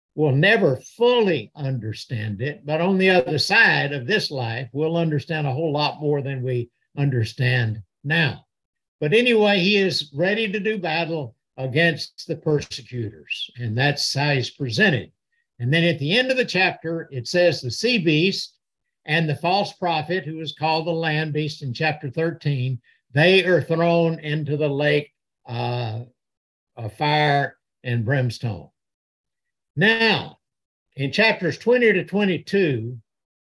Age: 60-79